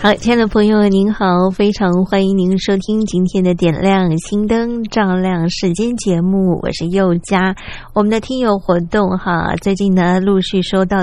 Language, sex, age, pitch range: Chinese, female, 20-39, 185-225 Hz